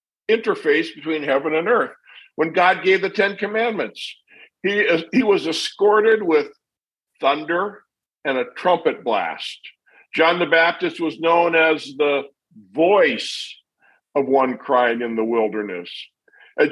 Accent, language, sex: American, English, male